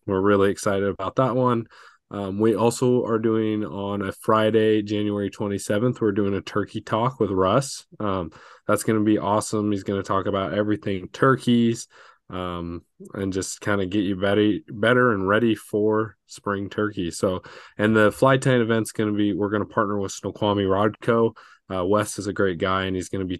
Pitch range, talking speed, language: 95-110 Hz, 200 wpm, English